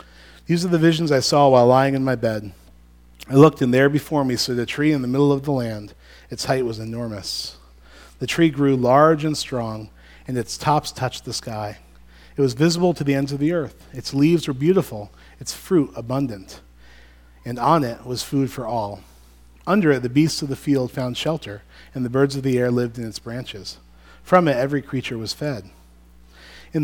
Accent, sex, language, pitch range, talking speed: American, male, English, 105-145 Hz, 205 wpm